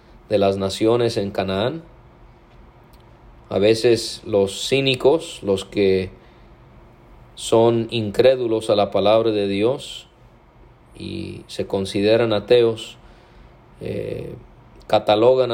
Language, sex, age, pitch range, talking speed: English, male, 40-59, 100-115 Hz, 95 wpm